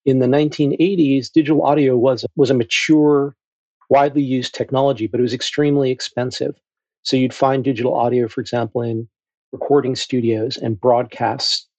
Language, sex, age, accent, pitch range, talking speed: English, male, 40-59, American, 120-145 Hz, 150 wpm